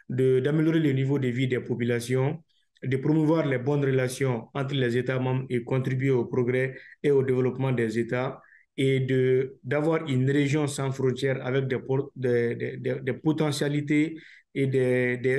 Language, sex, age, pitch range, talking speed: English, male, 50-69, 130-155 Hz, 165 wpm